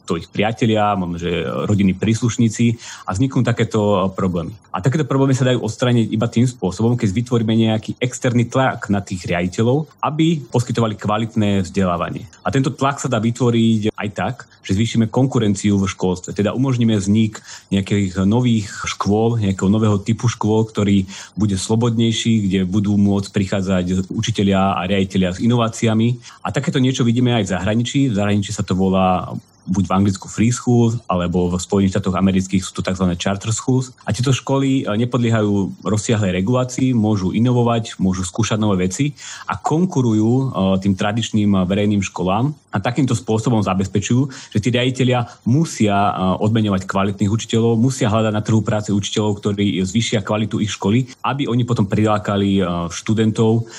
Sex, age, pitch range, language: male, 30-49, 100-120 Hz, Slovak